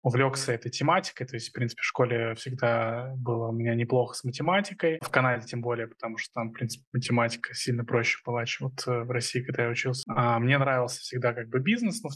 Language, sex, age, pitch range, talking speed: Russian, male, 20-39, 120-130 Hz, 225 wpm